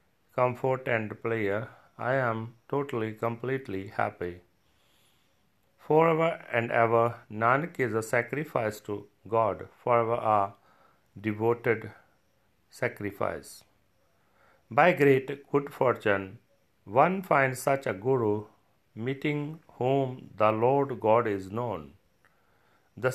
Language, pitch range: Punjabi, 105-130 Hz